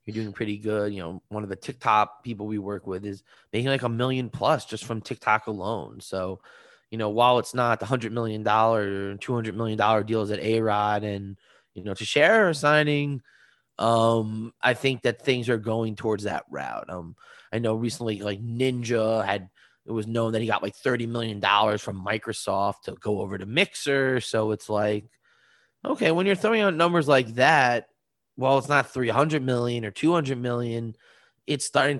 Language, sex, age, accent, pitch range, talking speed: English, male, 20-39, American, 105-125 Hz, 190 wpm